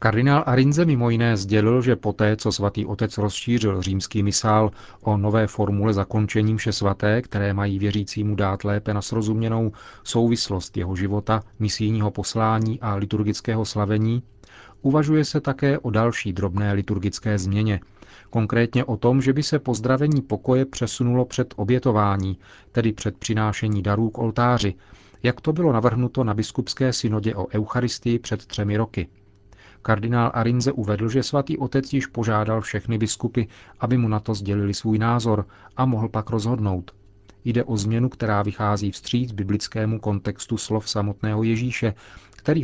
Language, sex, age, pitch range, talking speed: Czech, male, 40-59, 105-120 Hz, 145 wpm